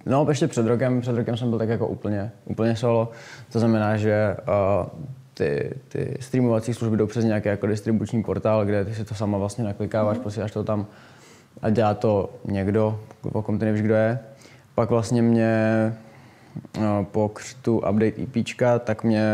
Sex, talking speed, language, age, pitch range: male, 175 wpm, Czech, 20-39, 105-120 Hz